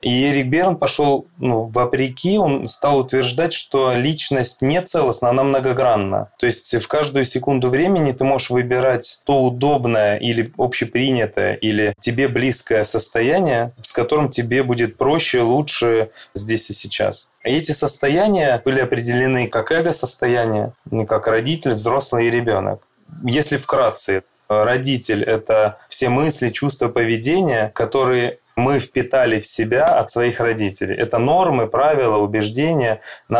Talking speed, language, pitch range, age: 135 wpm, Russian, 115-135 Hz, 20-39